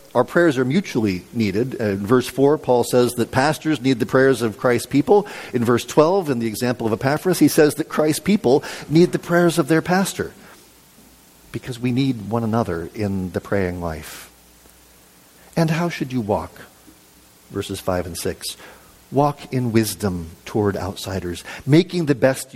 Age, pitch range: 50-69, 105-140 Hz